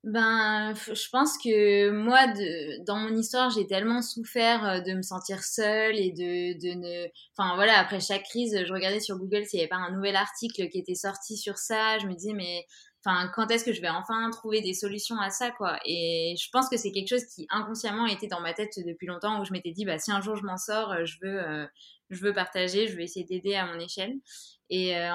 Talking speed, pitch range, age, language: 240 wpm, 180-220 Hz, 20-39, French